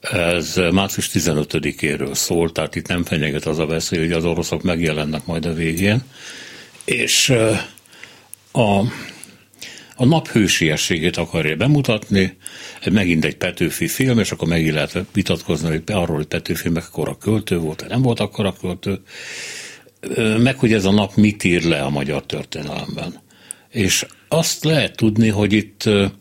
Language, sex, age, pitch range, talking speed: Hungarian, male, 60-79, 85-110 Hz, 140 wpm